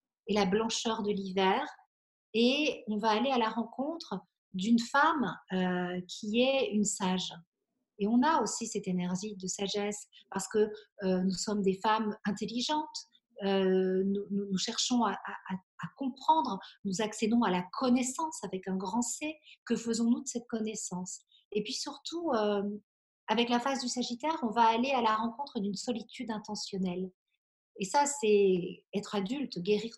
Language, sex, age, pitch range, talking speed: French, female, 50-69, 190-235 Hz, 165 wpm